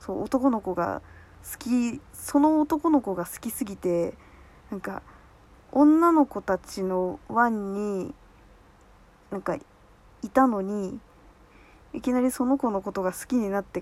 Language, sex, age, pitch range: Japanese, female, 20-39, 195-305 Hz